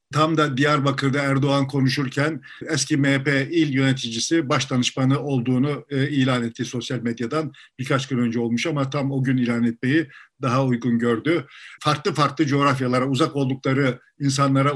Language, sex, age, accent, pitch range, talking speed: Turkish, male, 50-69, native, 130-155 Hz, 140 wpm